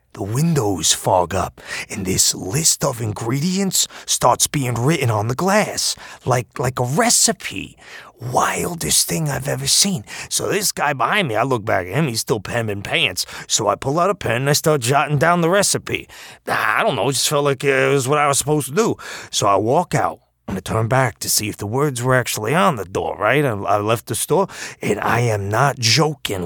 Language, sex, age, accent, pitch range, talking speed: English, male, 30-49, American, 110-150 Hz, 215 wpm